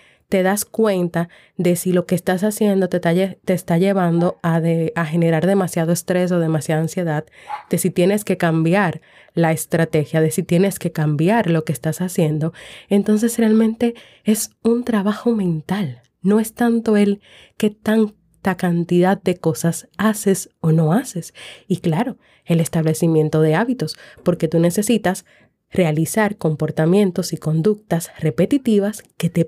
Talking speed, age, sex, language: 145 wpm, 30-49, female, Spanish